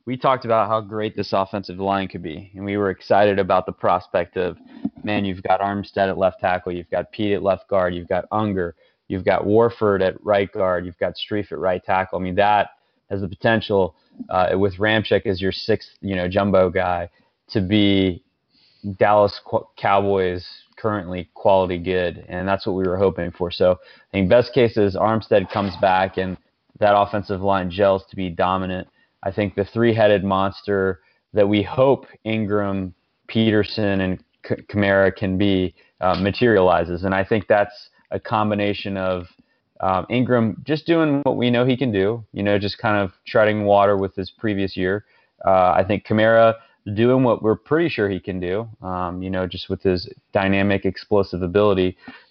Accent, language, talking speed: American, English, 180 wpm